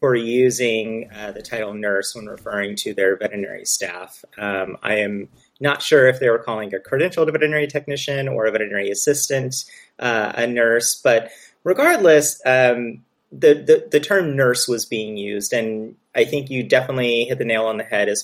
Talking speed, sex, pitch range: 180 wpm, male, 105-145 Hz